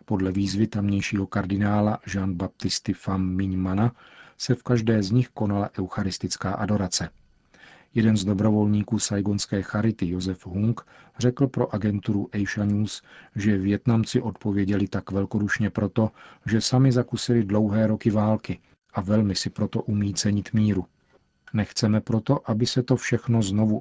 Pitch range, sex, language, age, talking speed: 100-110 Hz, male, Czech, 40-59, 130 wpm